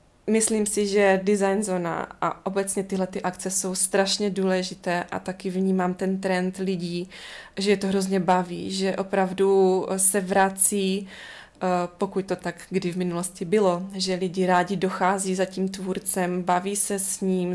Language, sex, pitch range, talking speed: Czech, female, 180-195 Hz, 155 wpm